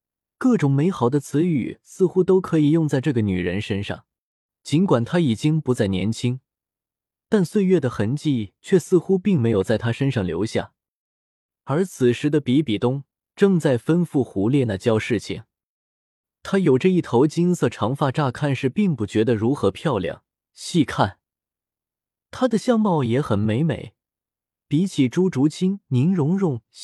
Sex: male